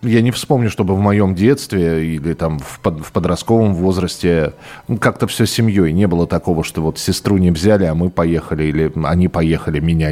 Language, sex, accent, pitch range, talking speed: Russian, male, native, 95-130 Hz, 180 wpm